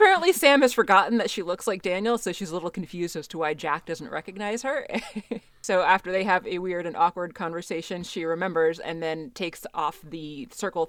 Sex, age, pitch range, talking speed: female, 20-39, 165-245 Hz, 210 wpm